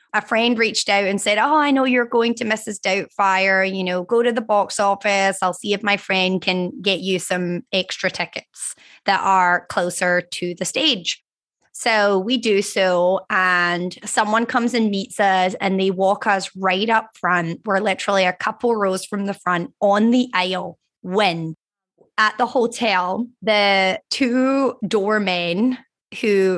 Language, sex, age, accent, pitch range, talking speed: English, female, 20-39, American, 185-230 Hz, 165 wpm